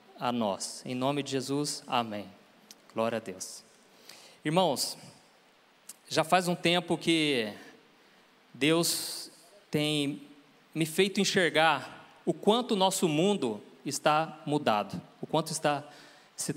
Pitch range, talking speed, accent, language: 150-180 Hz, 110 wpm, Brazilian, Portuguese